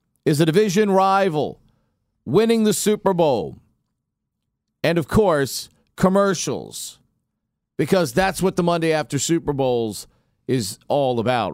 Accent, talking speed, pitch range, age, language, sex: American, 120 wpm, 145-195 Hz, 40-59, English, male